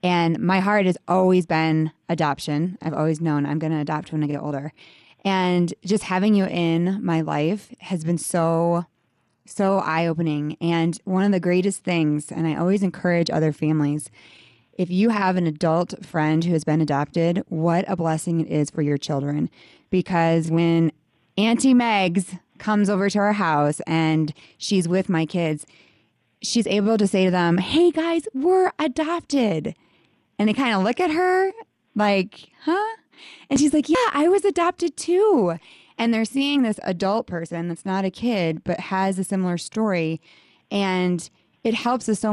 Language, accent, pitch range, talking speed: English, American, 165-215 Hz, 170 wpm